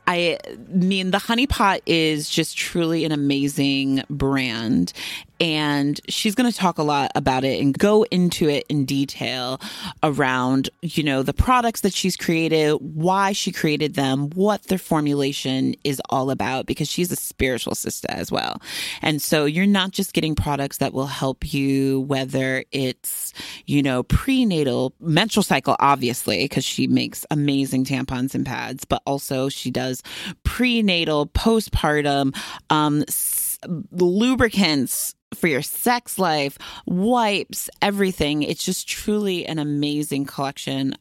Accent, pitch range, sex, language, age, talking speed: American, 135-190 Hz, female, English, 30-49, 140 wpm